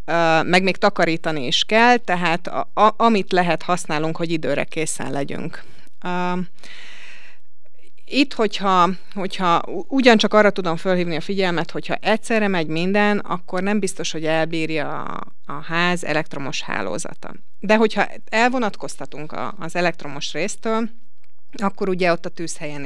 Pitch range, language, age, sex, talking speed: 155-195 Hz, Hungarian, 30-49, female, 125 wpm